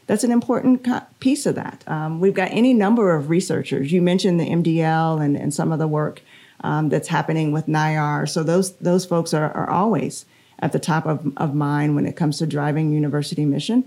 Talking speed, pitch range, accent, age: 210 wpm, 155-190 Hz, American, 40-59